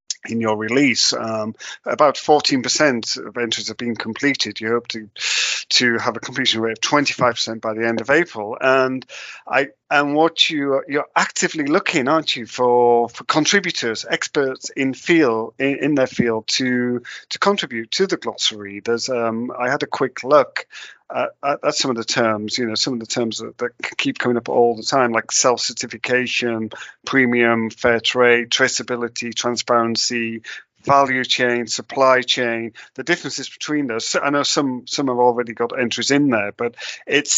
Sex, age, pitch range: male, 40-59, 115-135 Hz